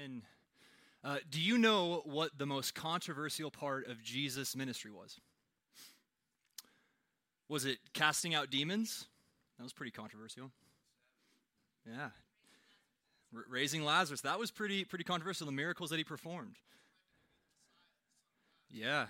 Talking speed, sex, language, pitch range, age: 115 wpm, male, English, 125-165 Hz, 20-39